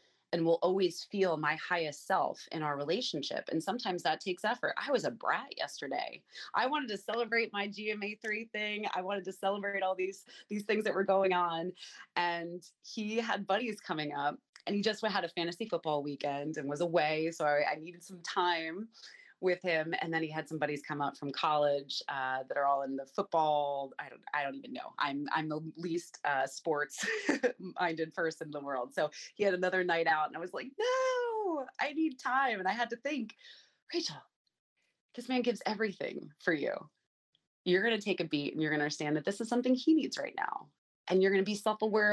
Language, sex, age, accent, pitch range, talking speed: English, female, 30-49, American, 155-215 Hz, 210 wpm